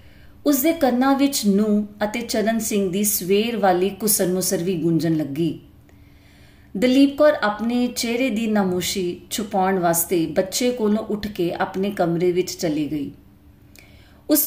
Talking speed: 135 wpm